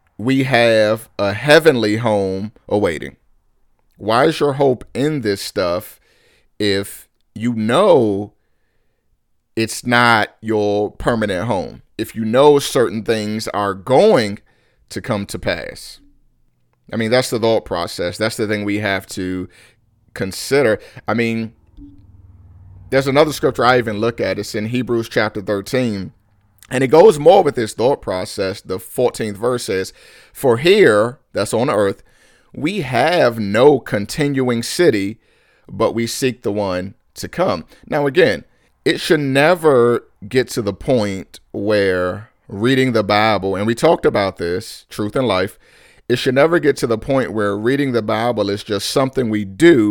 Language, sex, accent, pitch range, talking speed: English, male, American, 100-125 Hz, 150 wpm